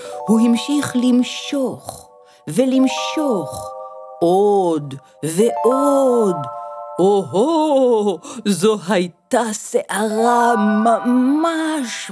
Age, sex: 50-69, female